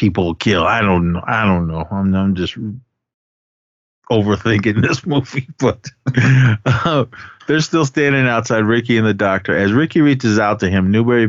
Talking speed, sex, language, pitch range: 170 wpm, male, English, 90-110 Hz